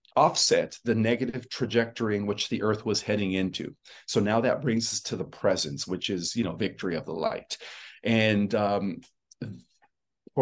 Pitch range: 100-120 Hz